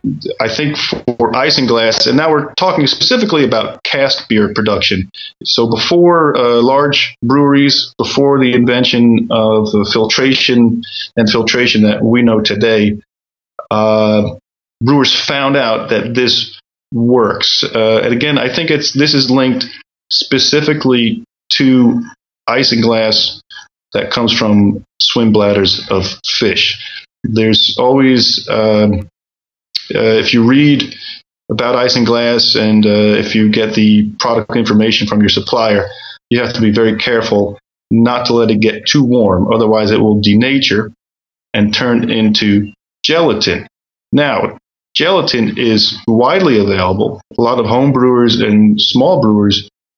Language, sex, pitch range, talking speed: English, male, 105-130 Hz, 140 wpm